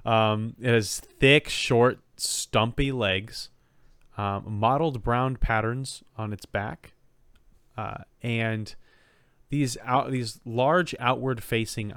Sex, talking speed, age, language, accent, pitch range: male, 95 wpm, 30-49, English, American, 100-125 Hz